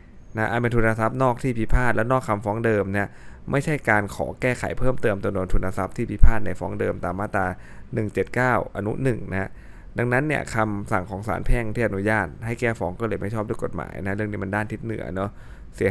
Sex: male